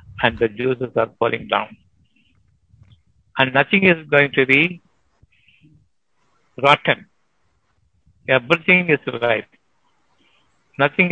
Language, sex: Tamil, male